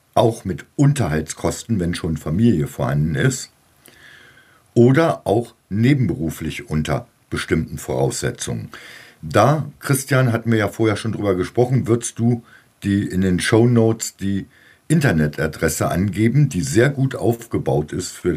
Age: 50-69